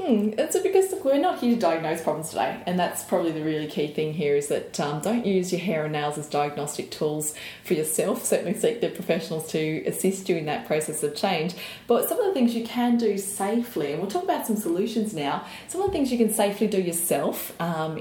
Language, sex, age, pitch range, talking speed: English, female, 20-39, 165-225 Hz, 230 wpm